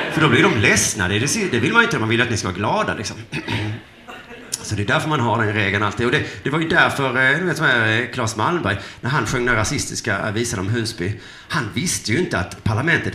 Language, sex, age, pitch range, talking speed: Swedish, male, 30-49, 115-185 Hz, 245 wpm